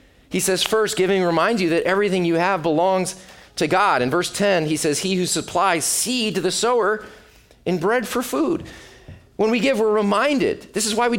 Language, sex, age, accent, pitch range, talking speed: English, male, 30-49, American, 175-225 Hz, 205 wpm